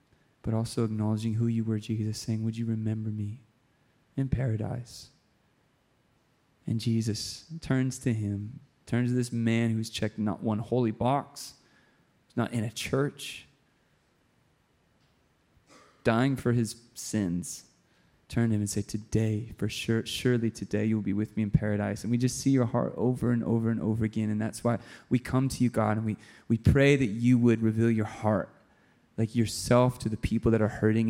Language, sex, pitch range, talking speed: English, male, 110-125 Hz, 180 wpm